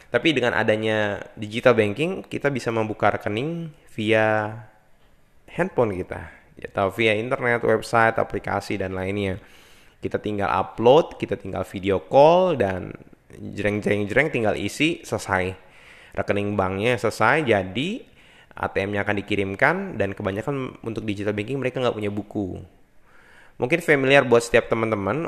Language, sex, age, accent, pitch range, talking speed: Indonesian, male, 20-39, native, 95-110 Hz, 125 wpm